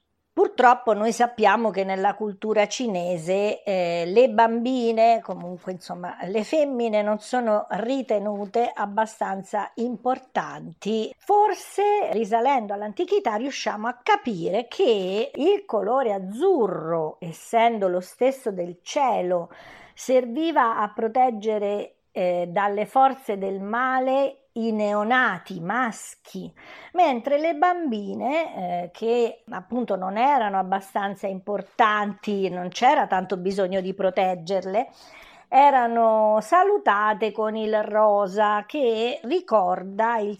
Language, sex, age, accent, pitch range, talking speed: Italian, female, 50-69, native, 195-255 Hz, 100 wpm